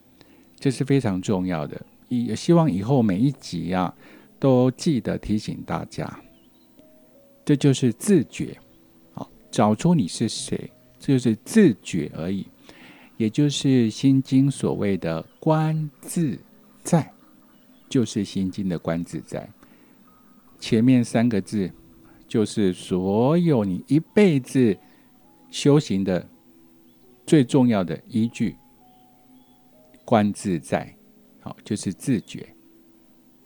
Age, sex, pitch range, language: 50-69, male, 95-140 Hz, Chinese